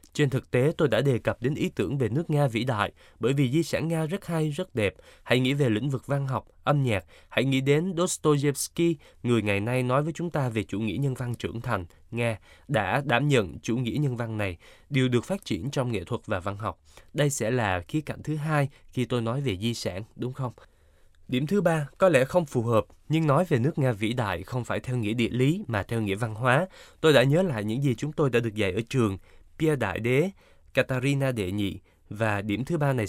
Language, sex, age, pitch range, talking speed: Vietnamese, male, 20-39, 110-145 Hz, 245 wpm